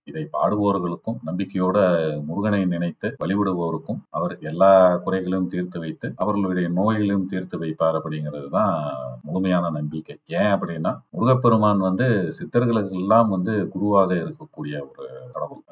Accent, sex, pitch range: native, male, 80-100 Hz